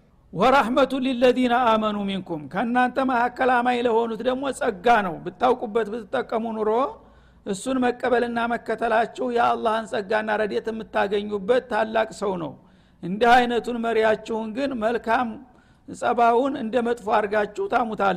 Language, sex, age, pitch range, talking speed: Amharic, male, 60-79, 210-250 Hz, 115 wpm